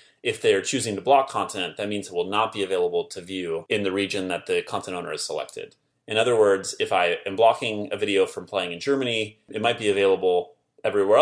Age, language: 30-49, English